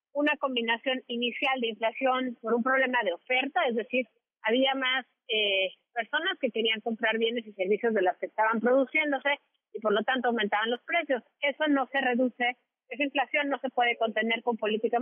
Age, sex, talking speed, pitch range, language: 40-59, female, 185 wpm, 235-285 Hz, Spanish